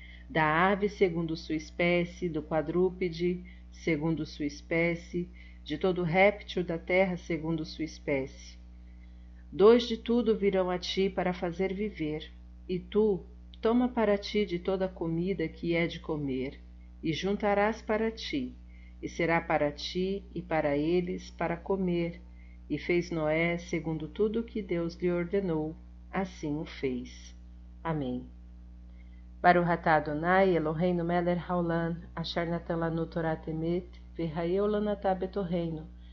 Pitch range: 145-180 Hz